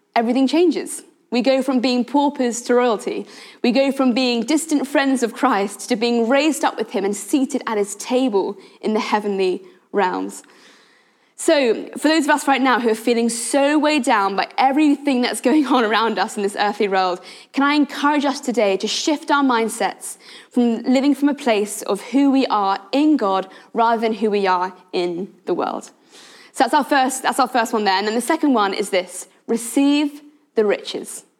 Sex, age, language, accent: female, 20-39, English, British